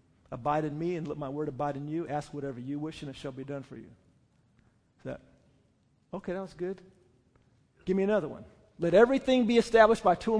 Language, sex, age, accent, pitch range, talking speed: English, male, 50-69, American, 145-200 Hz, 210 wpm